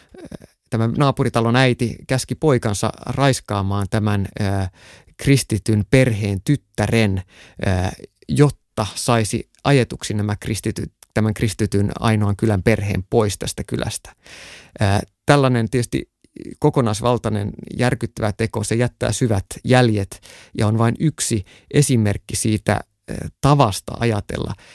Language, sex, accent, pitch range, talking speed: Finnish, male, native, 105-125 Hz, 90 wpm